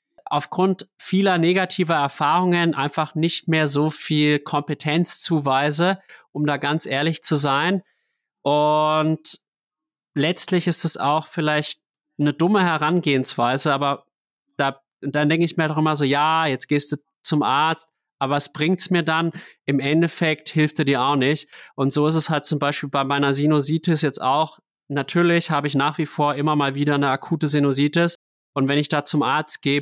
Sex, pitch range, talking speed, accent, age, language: male, 140-160 Hz, 170 wpm, German, 30-49, German